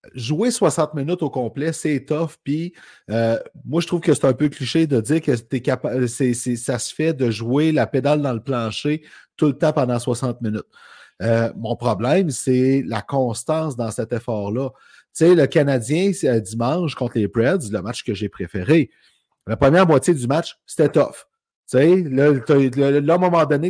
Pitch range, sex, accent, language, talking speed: 120-160 Hz, male, Canadian, French, 205 wpm